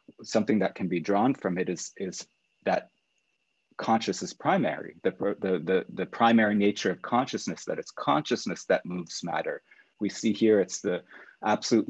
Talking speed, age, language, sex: 165 wpm, 30-49, English, male